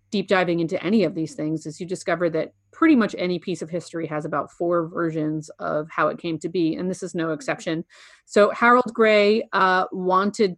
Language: English